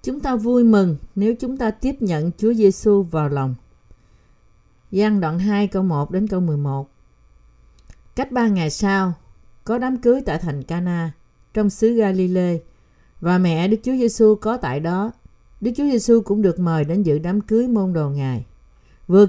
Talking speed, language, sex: 175 wpm, Vietnamese, female